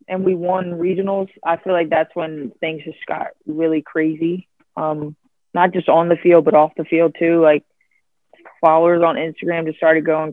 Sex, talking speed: female, 185 wpm